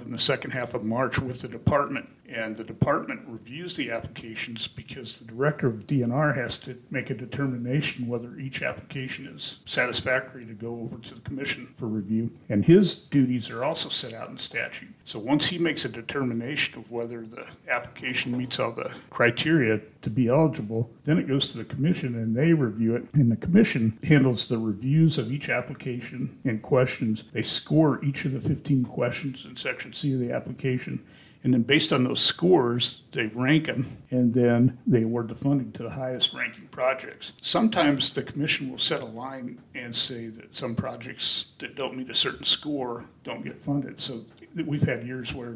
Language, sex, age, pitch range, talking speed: English, male, 50-69, 120-140 Hz, 190 wpm